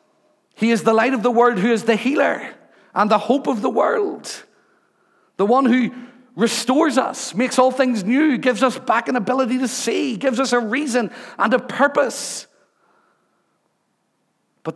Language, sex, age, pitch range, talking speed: English, male, 50-69, 205-280 Hz, 165 wpm